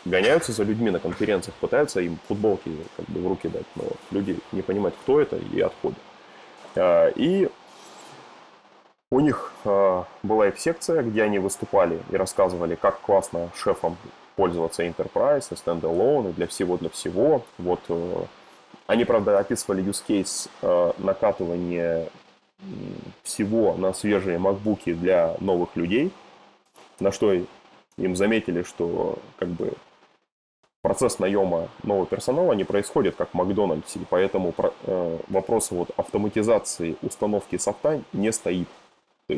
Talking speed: 125 wpm